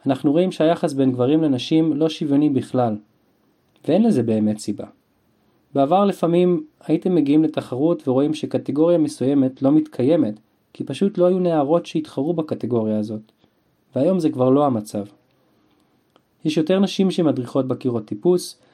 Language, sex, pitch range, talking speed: Hebrew, male, 130-175 Hz, 130 wpm